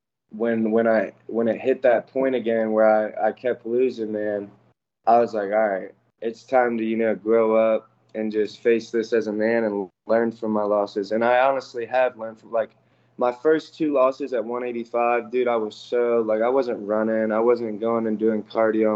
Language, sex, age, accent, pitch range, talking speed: English, male, 20-39, American, 105-120 Hz, 210 wpm